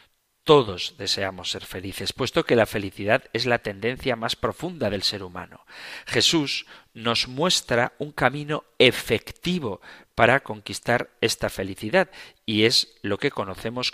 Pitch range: 100-145 Hz